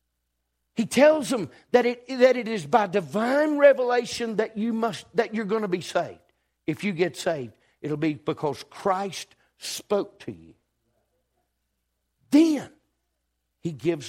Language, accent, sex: English, American, male